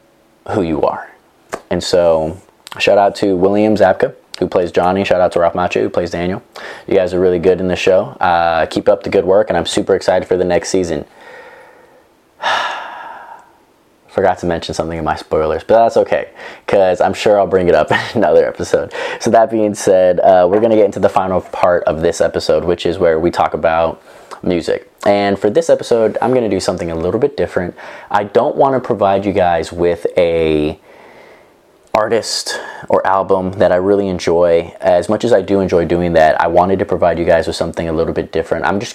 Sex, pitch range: male, 85-125 Hz